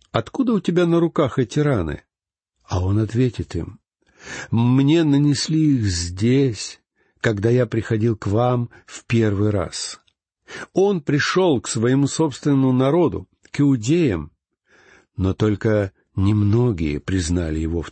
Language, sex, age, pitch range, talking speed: Russian, male, 60-79, 105-140 Hz, 125 wpm